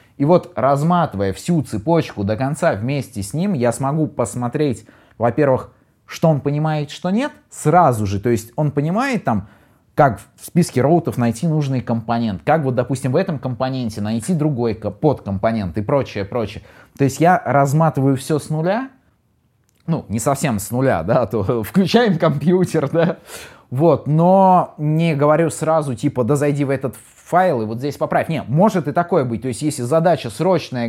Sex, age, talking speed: male, 20-39, 170 wpm